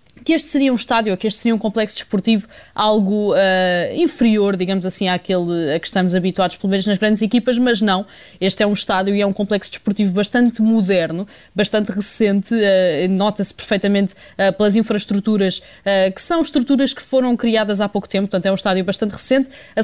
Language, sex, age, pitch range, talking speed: Portuguese, female, 20-39, 190-220 Hz, 195 wpm